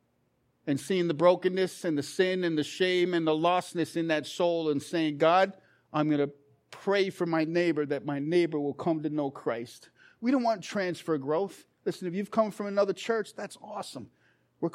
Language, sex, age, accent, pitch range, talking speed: English, male, 50-69, American, 155-210 Hz, 200 wpm